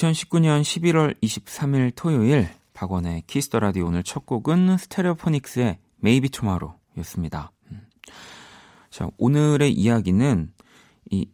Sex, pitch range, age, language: male, 90-130 Hz, 30-49, Korean